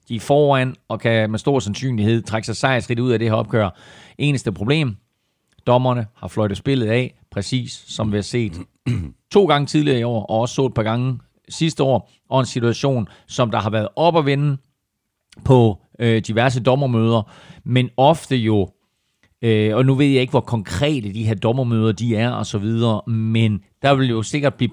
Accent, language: native, Danish